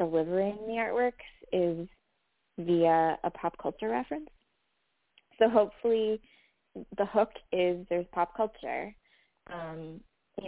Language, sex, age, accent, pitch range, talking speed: English, female, 20-39, American, 170-200 Hz, 110 wpm